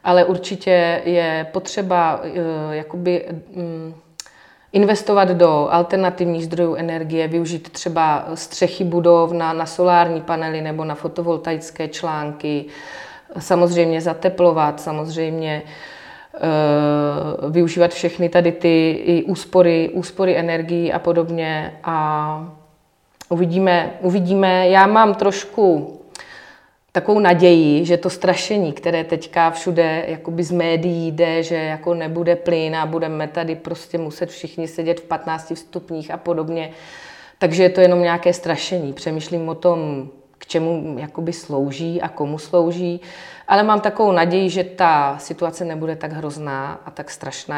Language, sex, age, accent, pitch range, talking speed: Czech, female, 30-49, native, 160-180 Hz, 120 wpm